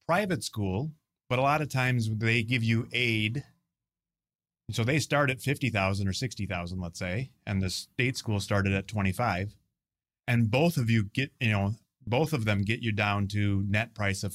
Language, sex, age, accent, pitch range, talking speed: English, male, 30-49, American, 100-130 Hz, 185 wpm